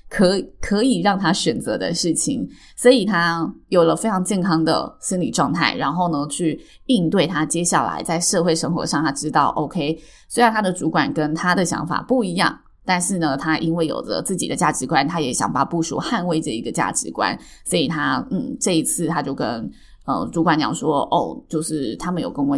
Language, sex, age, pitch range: Chinese, female, 20-39, 160-215 Hz